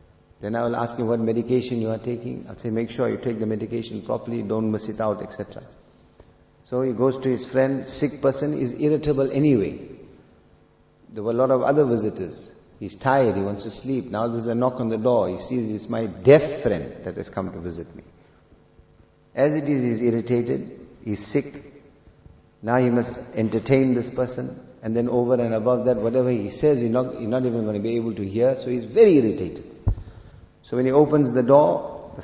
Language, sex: English, male